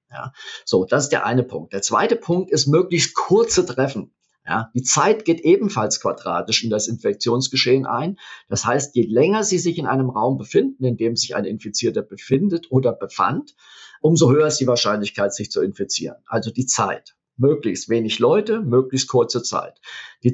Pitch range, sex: 120-170 Hz, male